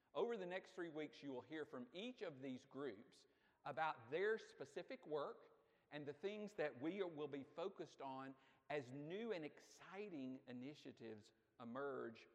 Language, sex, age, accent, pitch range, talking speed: English, male, 50-69, American, 130-190 Hz, 155 wpm